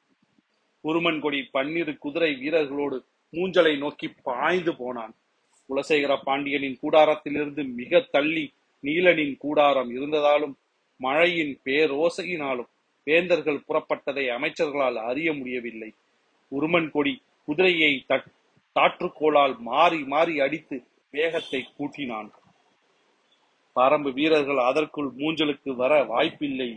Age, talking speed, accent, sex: 40-59, 60 wpm, native, male